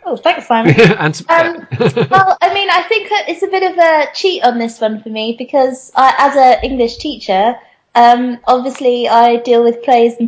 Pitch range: 215-275 Hz